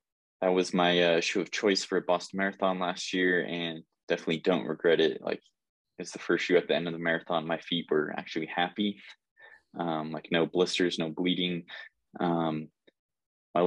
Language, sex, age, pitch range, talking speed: English, male, 20-39, 80-95 Hz, 185 wpm